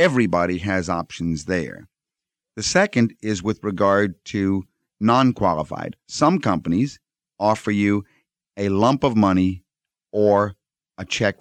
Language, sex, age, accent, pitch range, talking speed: English, male, 50-69, American, 90-115 Hz, 115 wpm